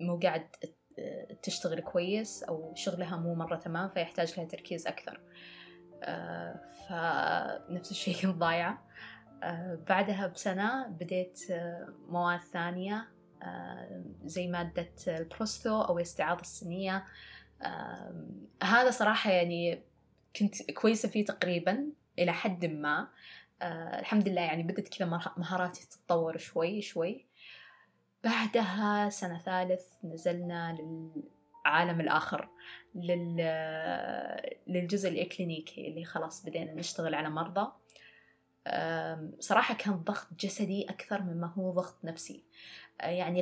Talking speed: 95 wpm